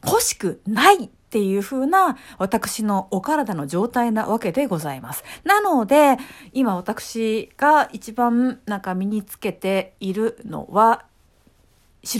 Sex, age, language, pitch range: female, 50-69, Japanese, 190-275 Hz